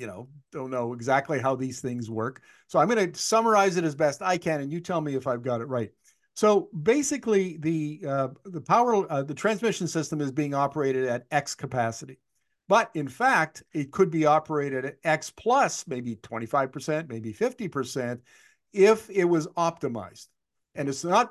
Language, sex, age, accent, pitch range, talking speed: English, male, 50-69, American, 130-170 Hz, 185 wpm